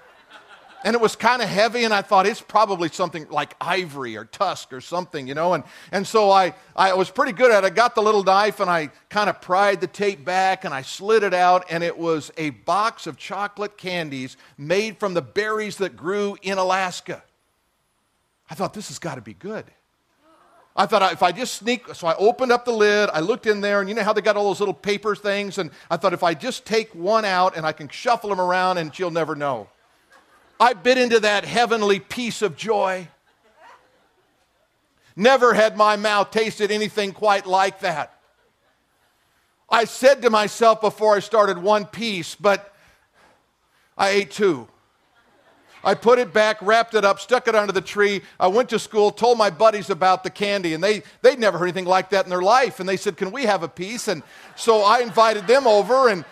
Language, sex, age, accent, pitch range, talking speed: English, male, 50-69, American, 180-215 Hz, 210 wpm